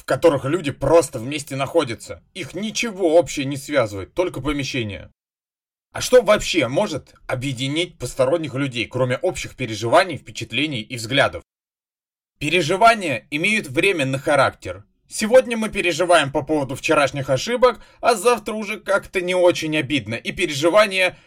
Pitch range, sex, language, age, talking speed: 130-185 Hz, male, Russian, 30-49, 130 wpm